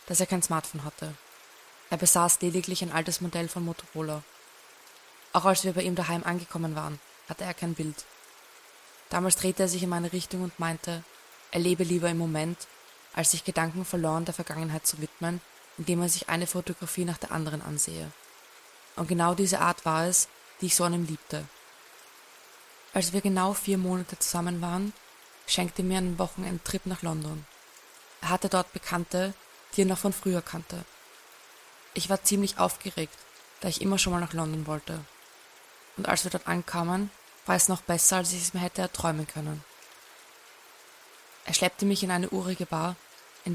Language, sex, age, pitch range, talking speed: German, female, 20-39, 165-185 Hz, 175 wpm